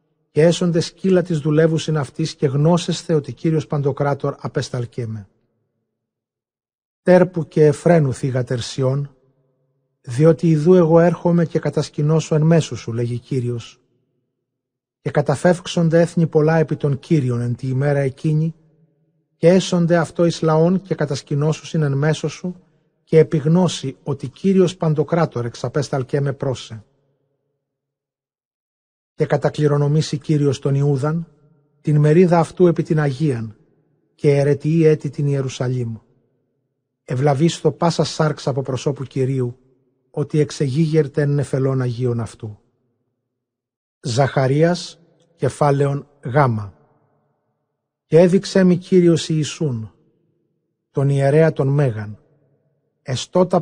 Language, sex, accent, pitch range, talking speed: Greek, male, native, 130-160 Hz, 105 wpm